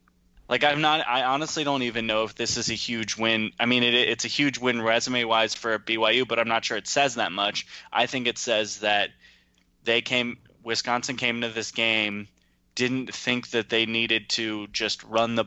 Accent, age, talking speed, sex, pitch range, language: American, 20-39, 215 wpm, male, 110-125 Hz, English